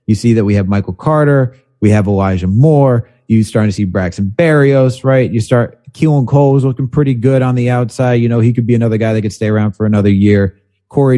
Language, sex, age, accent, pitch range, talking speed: English, male, 30-49, American, 100-125 Hz, 235 wpm